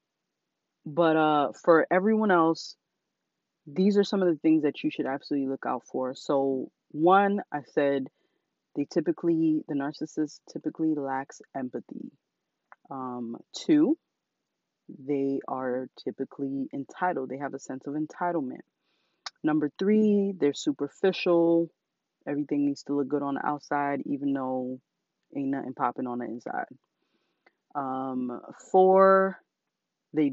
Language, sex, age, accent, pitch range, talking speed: English, female, 30-49, American, 135-180 Hz, 125 wpm